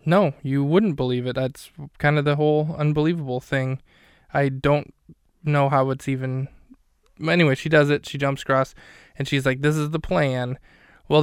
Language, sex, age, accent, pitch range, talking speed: English, male, 20-39, American, 130-145 Hz, 175 wpm